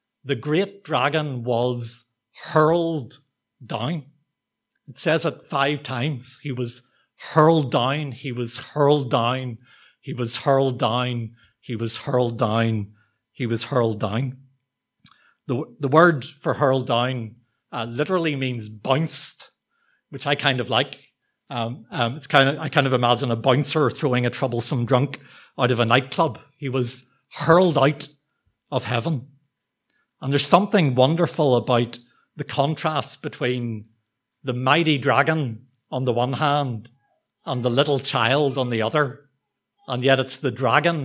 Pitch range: 125-150 Hz